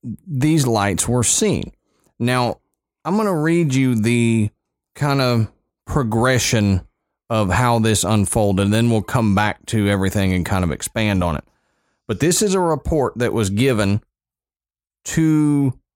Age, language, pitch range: 30-49, English, 105-140 Hz